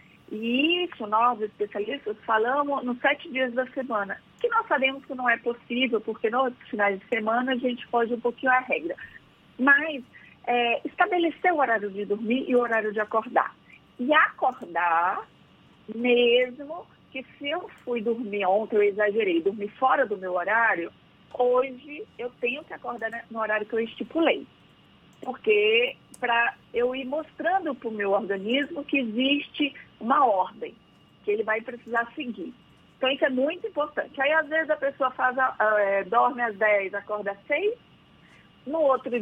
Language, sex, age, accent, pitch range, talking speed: Portuguese, female, 40-59, Brazilian, 225-285 Hz, 155 wpm